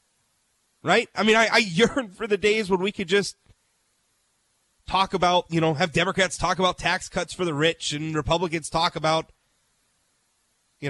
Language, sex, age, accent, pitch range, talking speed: English, male, 30-49, American, 175-255 Hz, 170 wpm